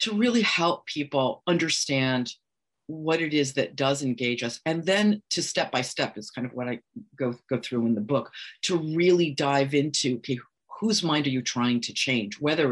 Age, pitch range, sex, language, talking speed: 50-69, 135-180 Hz, female, English, 200 wpm